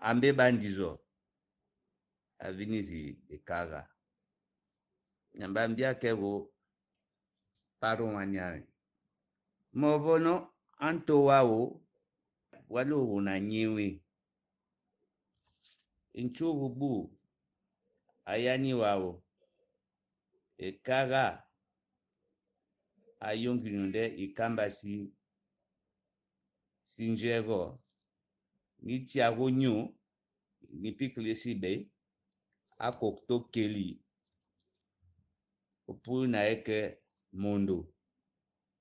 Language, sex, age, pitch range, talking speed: French, male, 60-79, 100-135 Hz, 50 wpm